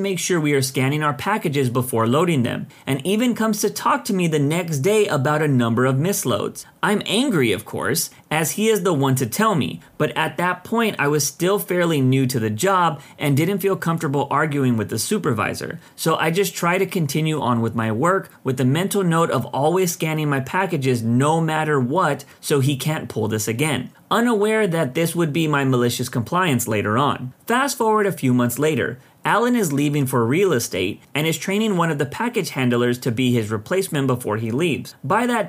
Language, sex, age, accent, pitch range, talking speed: English, male, 30-49, American, 125-185 Hz, 210 wpm